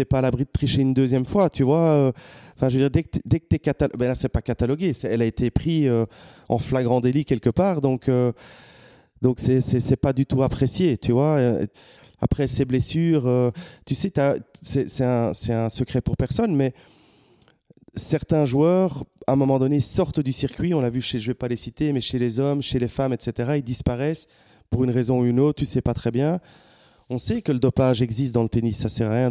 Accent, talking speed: French, 240 wpm